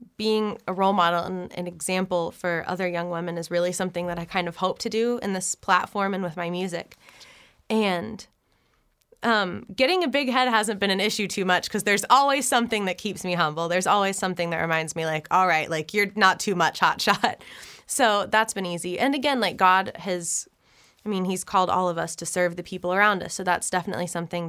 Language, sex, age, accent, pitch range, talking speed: English, female, 20-39, American, 175-205 Hz, 220 wpm